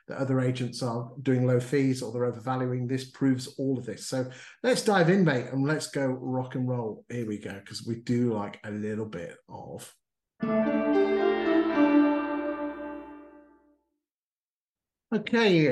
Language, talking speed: English, 140 wpm